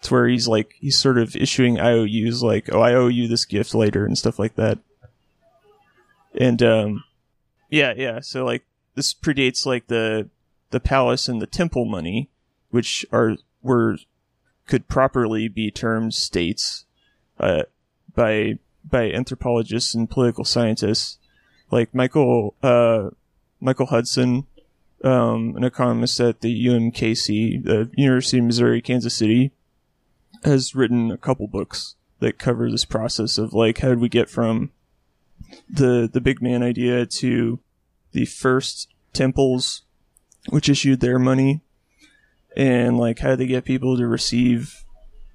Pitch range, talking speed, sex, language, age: 115-130 Hz, 140 wpm, male, English, 30-49